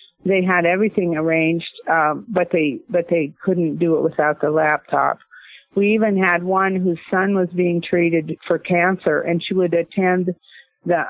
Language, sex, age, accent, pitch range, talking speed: English, female, 40-59, American, 160-185 Hz, 170 wpm